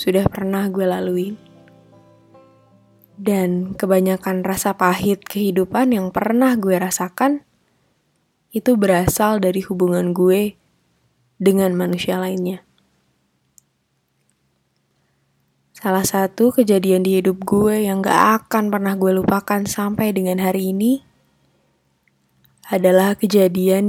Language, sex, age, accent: Indonesian, female, 20-39, native